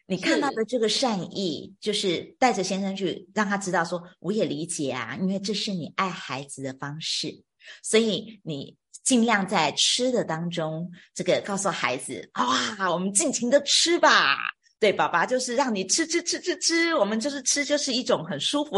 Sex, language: female, Chinese